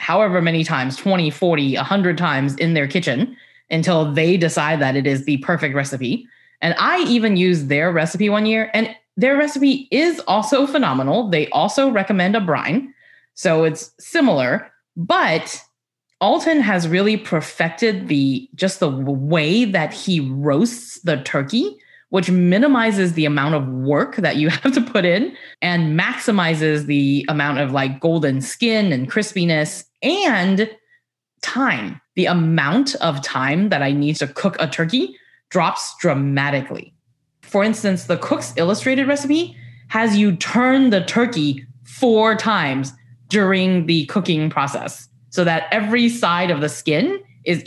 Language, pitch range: English, 155-240 Hz